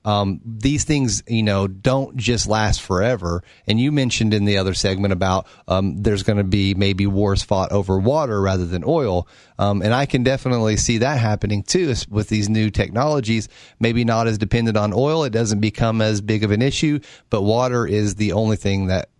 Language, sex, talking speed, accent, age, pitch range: English, male, 200 wpm, American, 30-49, 100-125 Hz